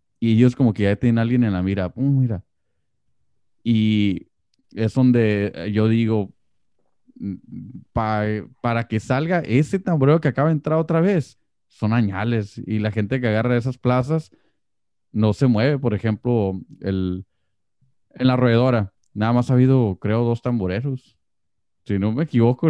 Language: Spanish